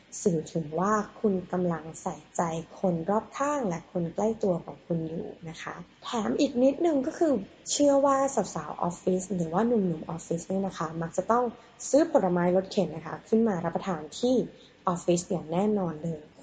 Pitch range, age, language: 175-230 Hz, 20-39, Thai